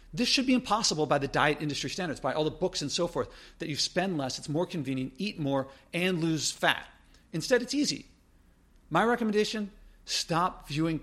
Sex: male